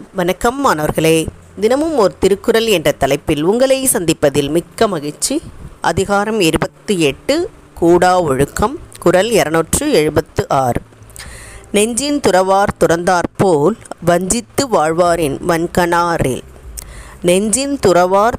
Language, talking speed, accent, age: Tamil, 90 wpm, native, 20-39